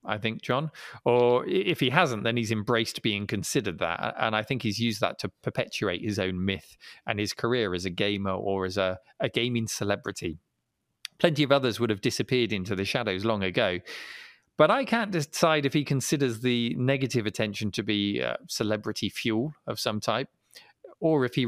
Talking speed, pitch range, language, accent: 190 wpm, 105-135 Hz, English, British